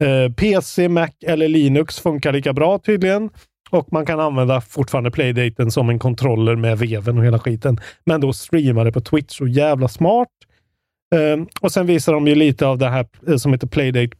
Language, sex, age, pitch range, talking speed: Swedish, male, 30-49, 125-160 Hz, 180 wpm